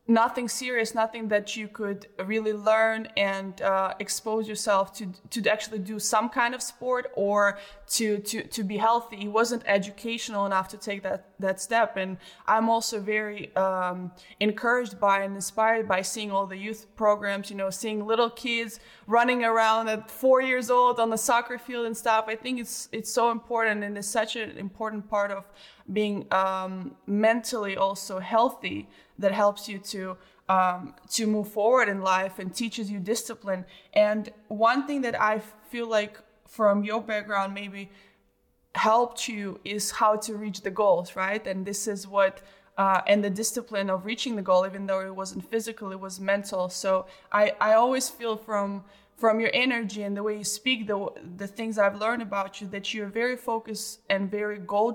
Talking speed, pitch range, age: 180 wpm, 195-225 Hz, 20-39